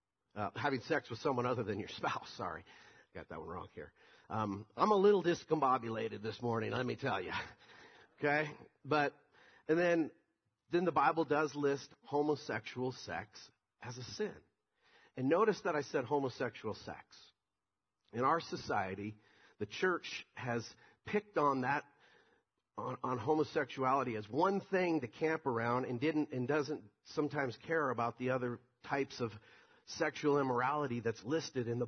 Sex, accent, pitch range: male, American, 120-155 Hz